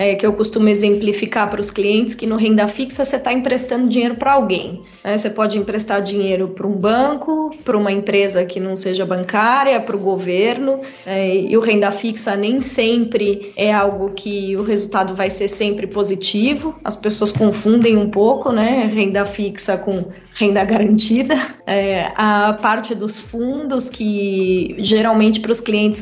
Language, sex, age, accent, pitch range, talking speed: Portuguese, female, 20-39, Brazilian, 200-225 Hz, 165 wpm